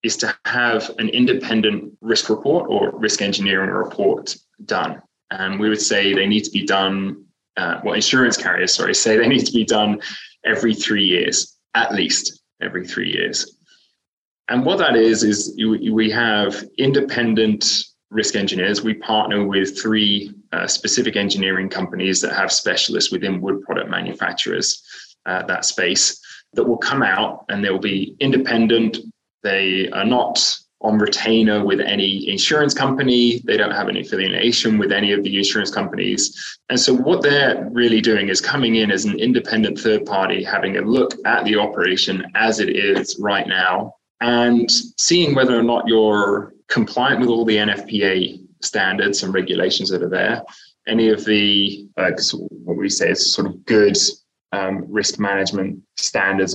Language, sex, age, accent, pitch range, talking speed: English, male, 20-39, British, 100-115 Hz, 160 wpm